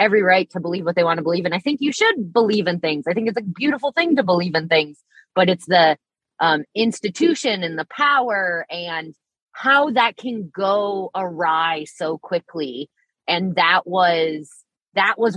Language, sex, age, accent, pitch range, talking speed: English, female, 20-39, American, 160-230 Hz, 185 wpm